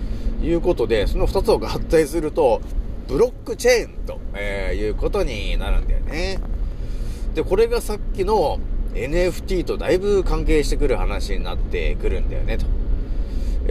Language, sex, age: Japanese, male, 40-59